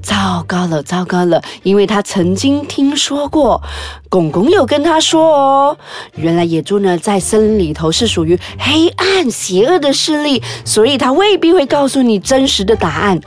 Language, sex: Chinese, female